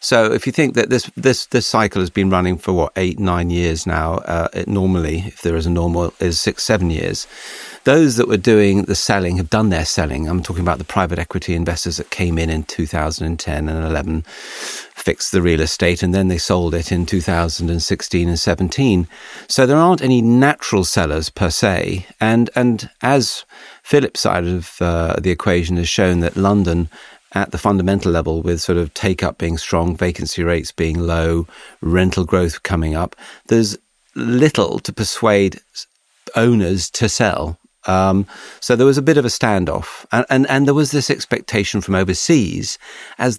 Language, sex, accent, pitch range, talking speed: English, male, British, 85-110 Hz, 185 wpm